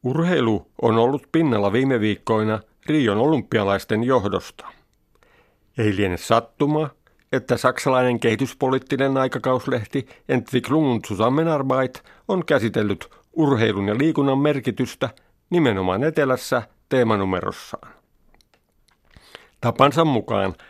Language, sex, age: Finnish, male, 50-69